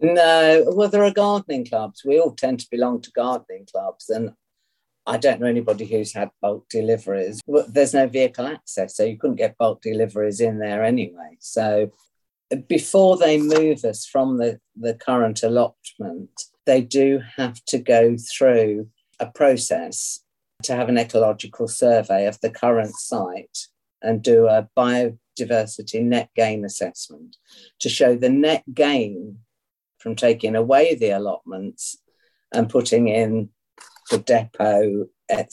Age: 50-69